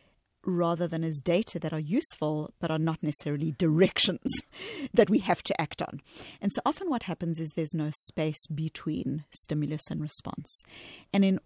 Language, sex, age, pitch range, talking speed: English, female, 40-59, 155-185 Hz, 175 wpm